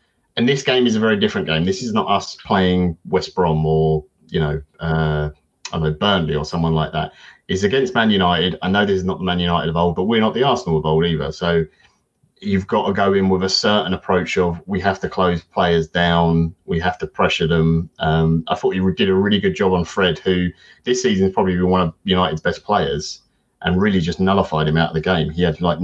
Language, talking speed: English, 245 wpm